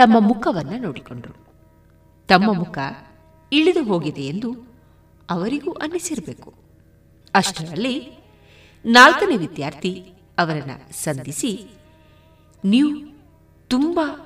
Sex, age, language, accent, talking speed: female, 30-49, Kannada, native, 70 wpm